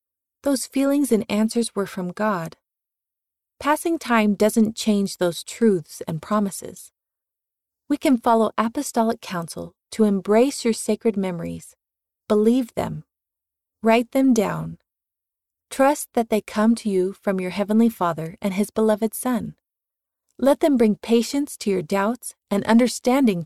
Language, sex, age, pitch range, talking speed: English, female, 30-49, 185-240 Hz, 135 wpm